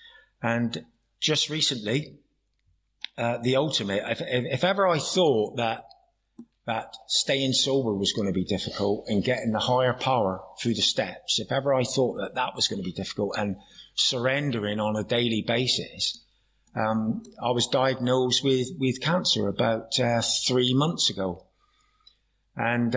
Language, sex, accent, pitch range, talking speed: English, male, British, 115-160 Hz, 155 wpm